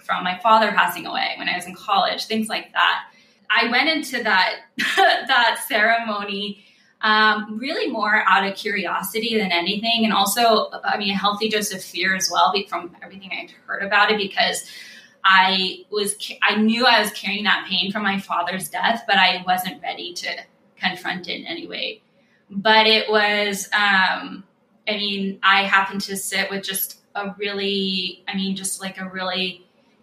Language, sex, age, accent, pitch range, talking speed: English, female, 10-29, American, 190-215 Hz, 175 wpm